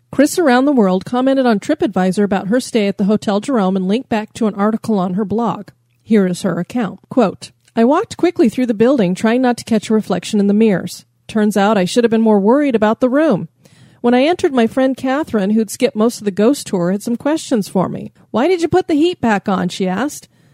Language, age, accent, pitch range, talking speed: English, 30-49, American, 195-265 Hz, 240 wpm